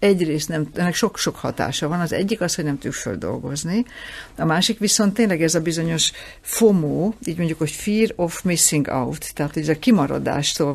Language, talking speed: Hungarian, 190 wpm